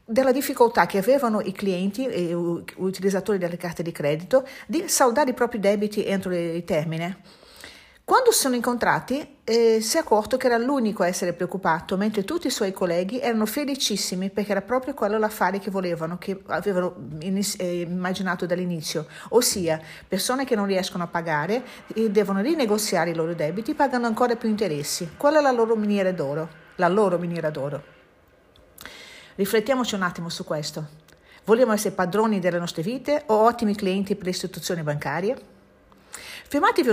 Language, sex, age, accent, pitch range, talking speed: Italian, female, 50-69, native, 180-230 Hz, 160 wpm